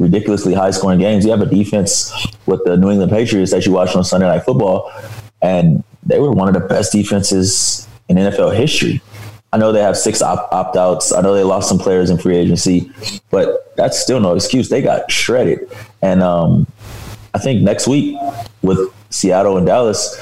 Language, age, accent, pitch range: English, 20-39, American, 95-110 Hz